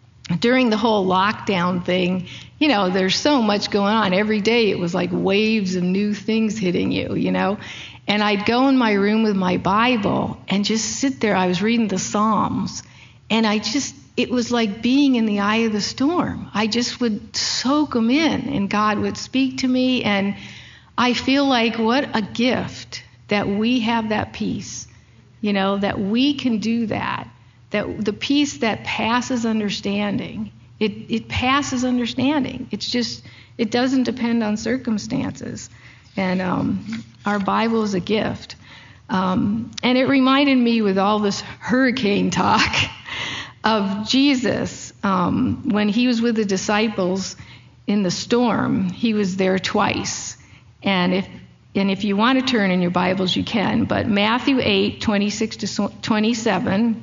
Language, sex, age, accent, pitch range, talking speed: English, female, 50-69, American, 190-240 Hz, 165 wpm